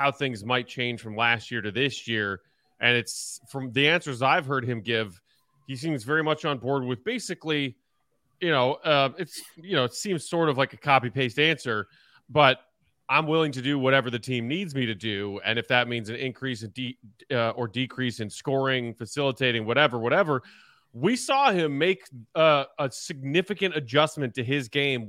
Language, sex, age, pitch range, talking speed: English, male, 30-49, 120-150 Hz, 195 wpm